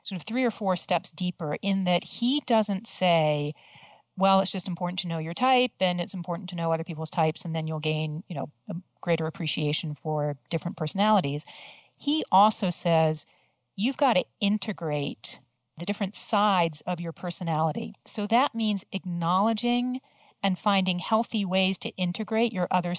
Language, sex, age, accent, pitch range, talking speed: English, female, 40-59, American, 165-205 Hz, 165 wpm